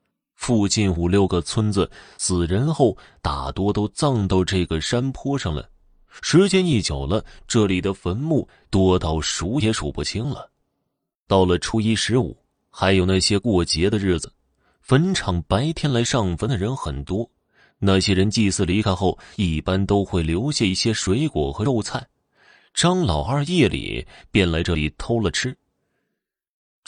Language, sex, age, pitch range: Chinese, male, 20-39, 85-115 Hz